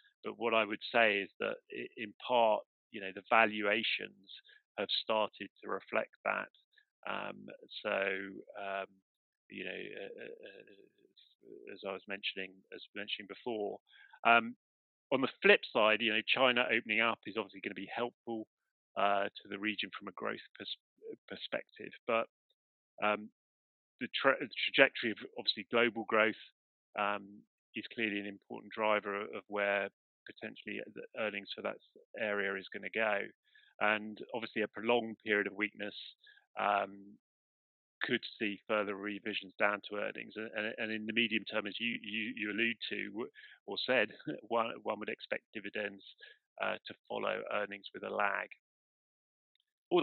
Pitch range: 100-130 Hz